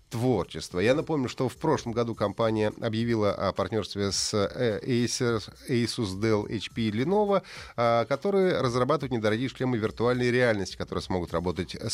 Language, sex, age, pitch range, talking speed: Russian, male, 30-49, 100-135 Hz, 135 wpm